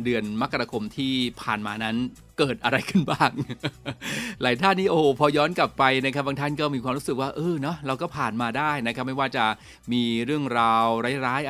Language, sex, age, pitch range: Thai, male, 20-39, 115-150 Hz